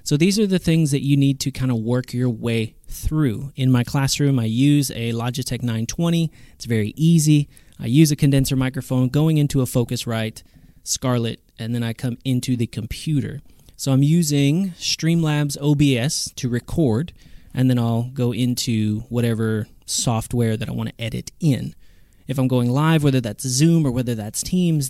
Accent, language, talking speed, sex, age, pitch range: American, English, 180 wpm, male, 30-49, 120-150 Hz